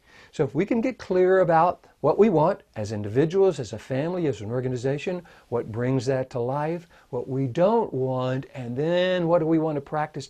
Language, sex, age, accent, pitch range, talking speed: English, male, 60-79, American, 120-150 Hz, 205 wpm